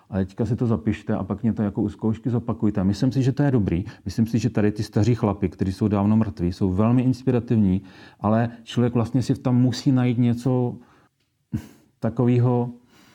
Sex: male